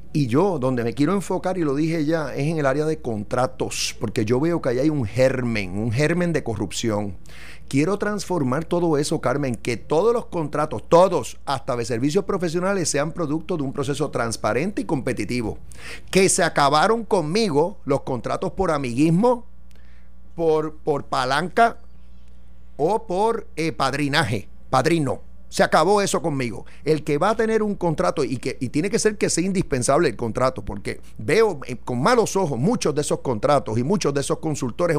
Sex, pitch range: male, 120-175 Hz